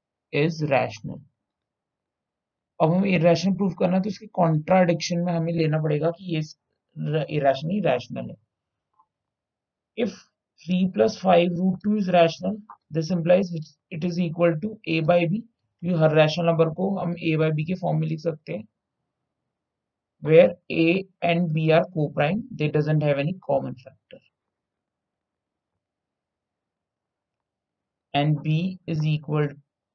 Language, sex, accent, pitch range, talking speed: Hindi, male, native, 145-180 Hz, 85 wpm